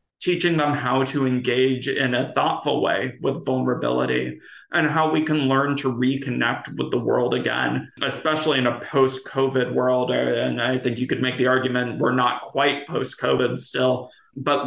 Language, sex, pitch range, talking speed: English, male, 125-135 Hz, 170 wpm